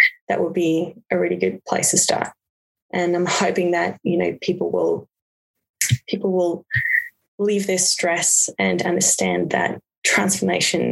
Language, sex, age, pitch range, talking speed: English, female, 20-39, 180-205 Hz, 145 wpm